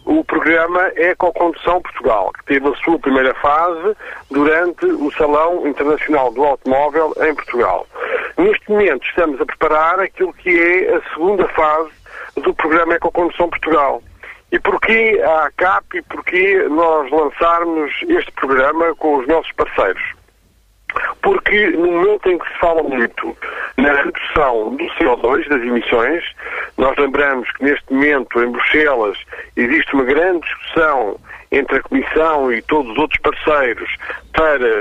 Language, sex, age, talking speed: Portuguese, male, 50-69, 140 wpm